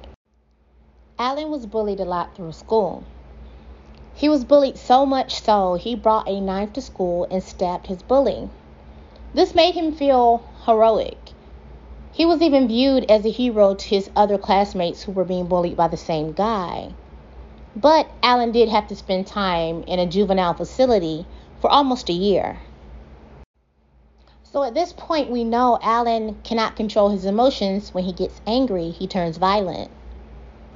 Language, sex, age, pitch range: English, female, 30-49, 165-235 Hz